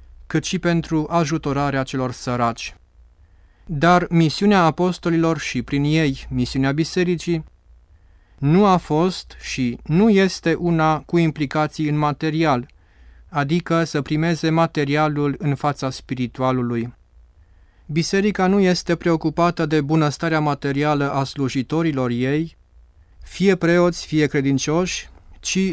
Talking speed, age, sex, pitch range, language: 110 wpm, 30-49, male, 135-170 Hz, Romanian